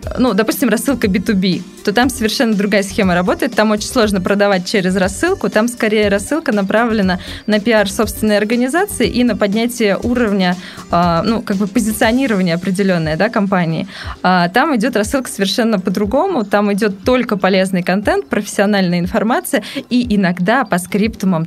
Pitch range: 190-235 Hz